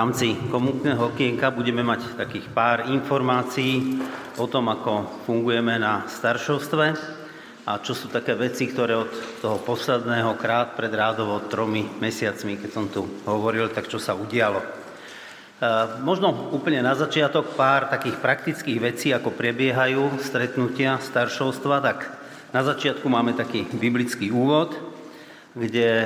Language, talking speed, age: Slovak, 130 wpm, 40-59